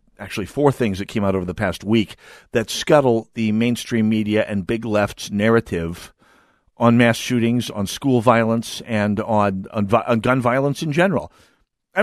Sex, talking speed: male, 170 wpm